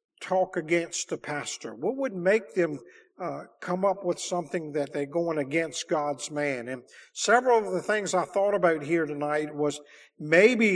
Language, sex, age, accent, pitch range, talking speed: English, male, 50-69, American, 150-195 Hz, 175 wpm